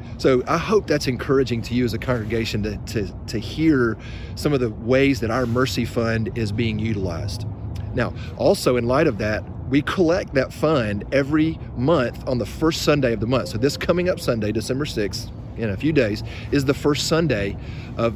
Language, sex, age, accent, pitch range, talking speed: English, male, 30-49, American, 110-135 Hz, 200 wpm